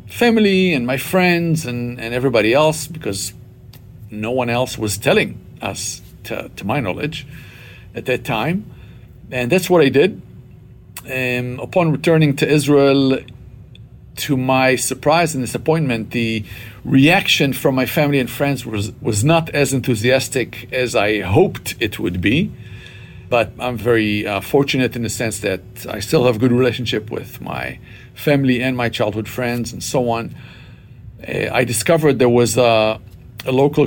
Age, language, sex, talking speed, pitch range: 50-69, English, male, 155 wpm, 115-140 Hz